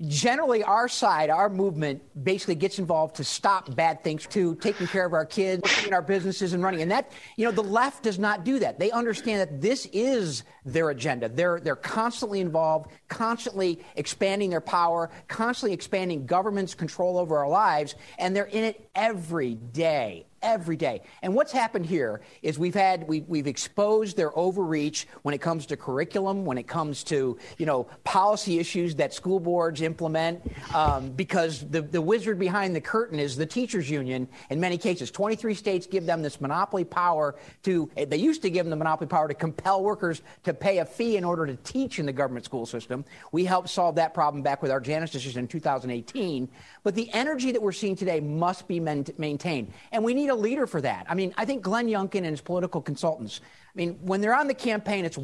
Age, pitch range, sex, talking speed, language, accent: 50-69, 150-195 Hz, male, 200 wpm, English, American